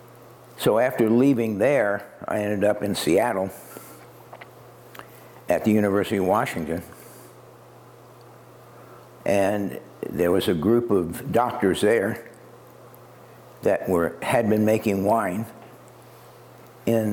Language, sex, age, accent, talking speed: English, male, 60-79, American, 100 wpm